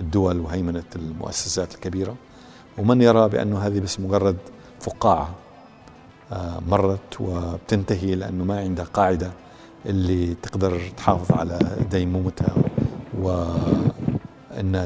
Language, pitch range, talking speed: Arabic, 85-100 Hz, 90 wpm